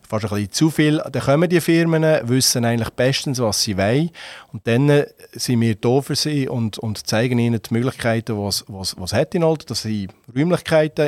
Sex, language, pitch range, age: male, German, 105-135 Hz, 40-59